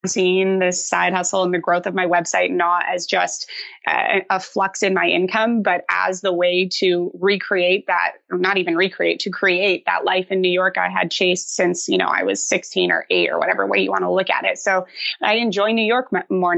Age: 20-39